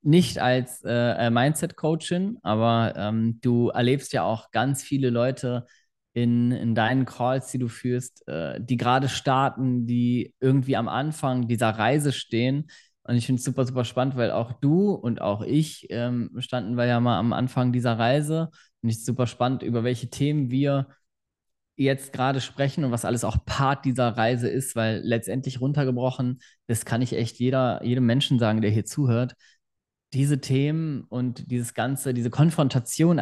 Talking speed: 165 wpm